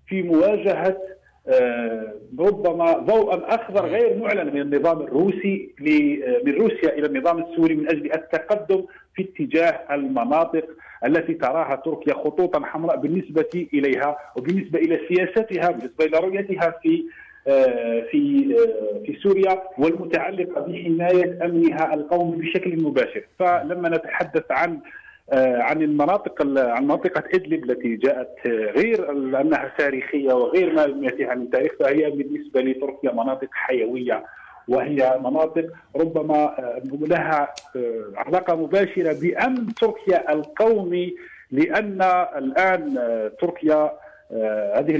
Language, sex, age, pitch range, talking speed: Arabic, male, 50-69, 150-205 Hz, 105 wpm